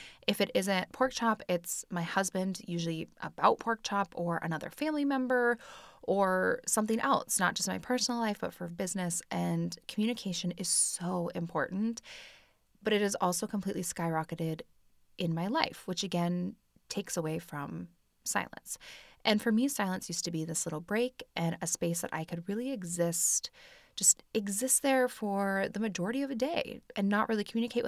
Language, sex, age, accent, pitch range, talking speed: English, female, 20-39, American, 170-225 Hz, 170 wpm